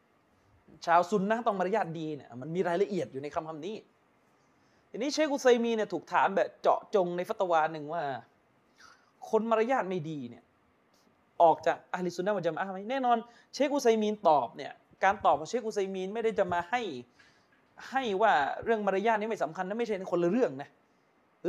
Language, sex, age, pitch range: Thai, male, 20-39, 175-225 Hz